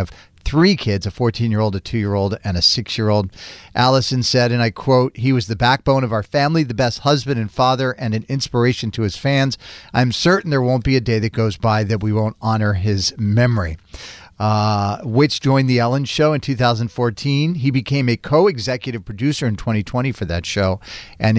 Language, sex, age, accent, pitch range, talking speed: English, male, 40-59, American, 100-125 Hz, 195 wpm